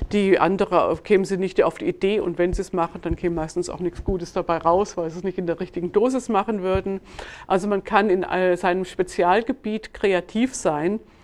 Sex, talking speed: female, 210 wpm